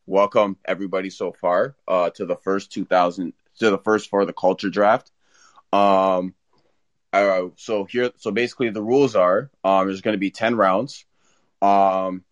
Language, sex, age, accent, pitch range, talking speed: English, male, 30-49, American, 95-105 Hz, 160 wpm